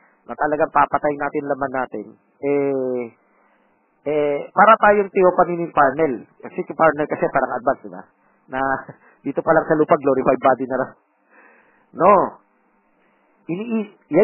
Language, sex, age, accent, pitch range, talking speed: Filipino, male, 40-59, native, 140-185 Hz, 125 wpm